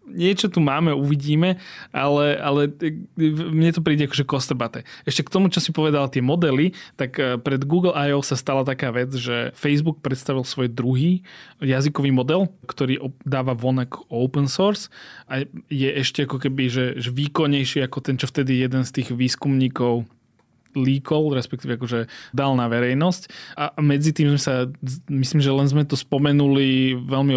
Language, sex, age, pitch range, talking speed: Slovak, male, 20-39, 130-150 Hz, 160 wpm